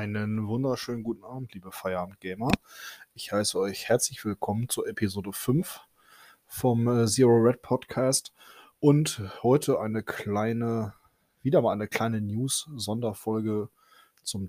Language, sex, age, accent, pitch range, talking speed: German, male, 20-39, German, 100-120 Hz, 120 wpm